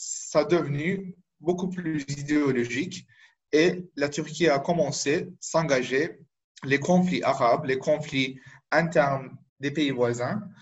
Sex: male